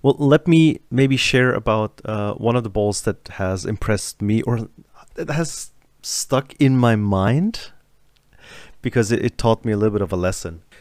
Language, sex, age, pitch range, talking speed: English, male, 30-49, 95-120 Hz, 185 wpm